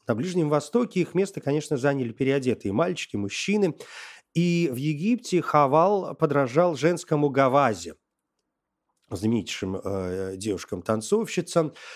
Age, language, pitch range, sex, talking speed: 30-49, Russian, 110-165 Hz, male, 100 wpm